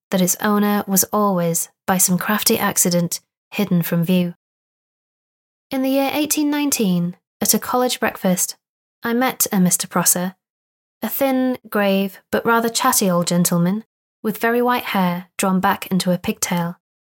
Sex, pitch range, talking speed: female, 185-220 Hz, 150 wpm